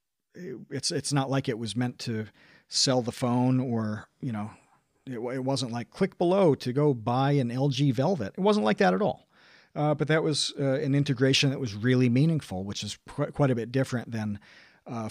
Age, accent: 40-59, American